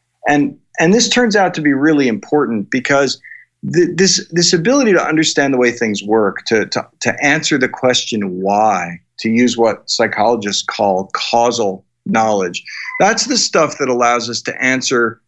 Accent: American